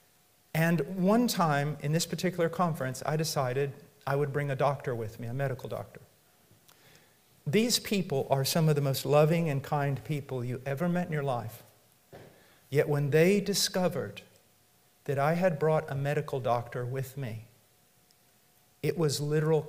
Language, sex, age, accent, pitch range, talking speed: English, male, 50-69, American, 145-210 Hz, 160 wpm